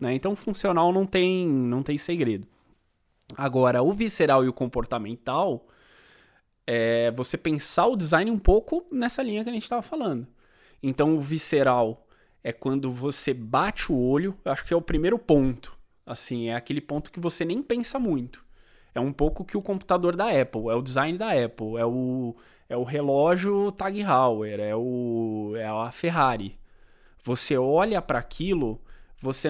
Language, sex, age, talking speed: Portuguese, male, 20-39, 170 wpm